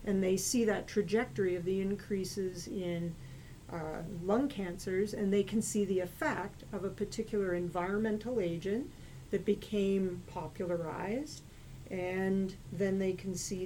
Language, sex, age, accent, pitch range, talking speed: English, female, 40-59, American, 175-200 Hz, 135 wpm